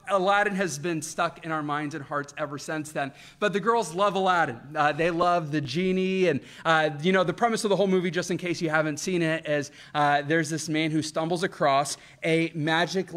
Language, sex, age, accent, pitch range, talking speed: English, male, 30-49, American, 160-205 Hz, 225 wpm